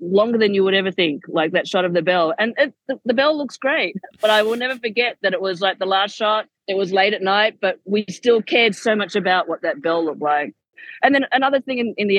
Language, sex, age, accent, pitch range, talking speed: English, female, 30-49, Australian, 175-230 Hz, 270 wpm